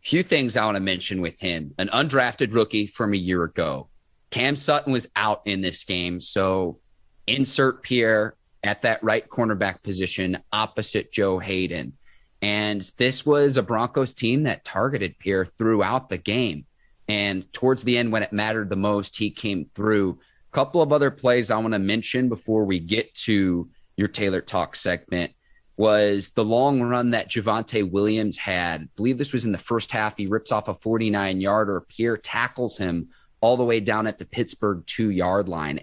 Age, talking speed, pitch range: 30-49, 180 wpm, 95-120 Hz